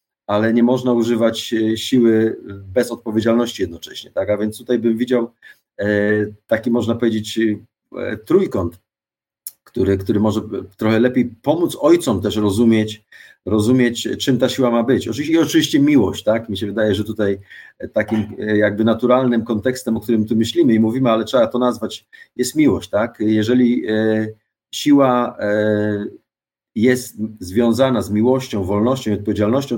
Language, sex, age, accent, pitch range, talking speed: Polish, male, 40-59, native, 105-125 Hz, 135 wpm